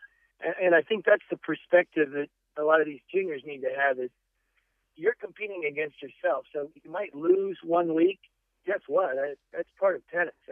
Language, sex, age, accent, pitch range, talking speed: English, male, 50-69, American, 145-190 Hz, 185 wpm